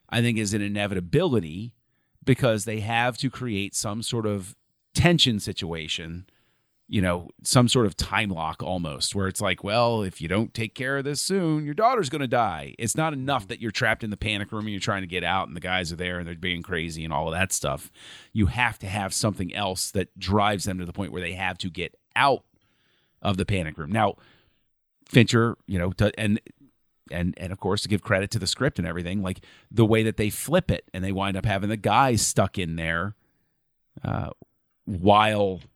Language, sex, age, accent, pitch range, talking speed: English, male, 30-49, American, 95-120 Hz, 215 wpm